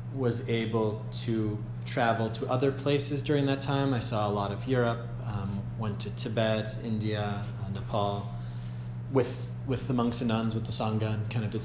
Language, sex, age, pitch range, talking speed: English, male, 30-49, 110-120 Hz, 185 wpm